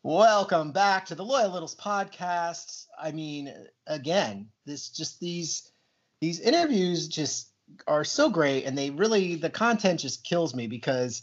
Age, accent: 30-49, American